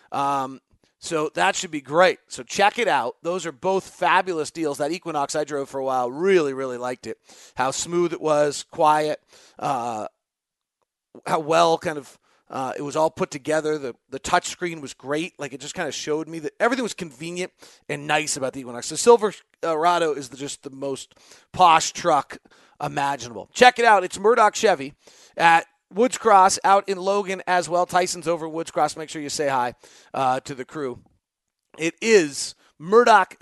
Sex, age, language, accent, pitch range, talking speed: male, 30-49, English, American, 140-180 Hz, 185 wpm